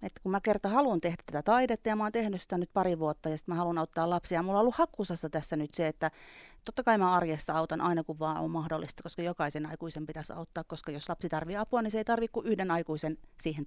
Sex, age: female, 30-49